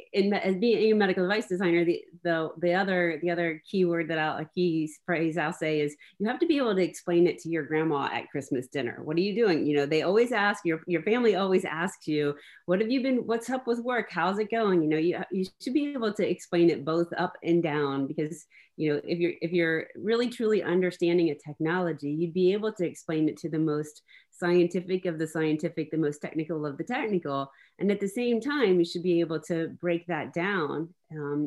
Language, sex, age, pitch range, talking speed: English, female, 30-49, 155-190 Hz, 235 wpm